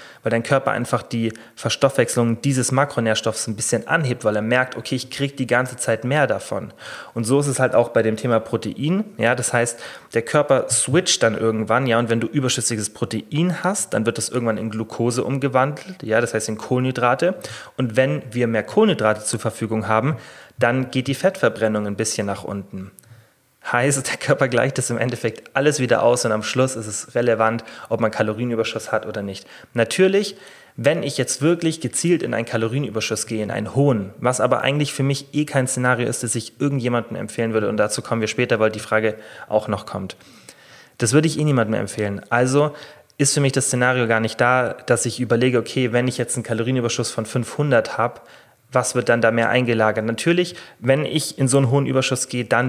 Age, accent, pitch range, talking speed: 30-49, German, 115-135 Hz, 205 wpm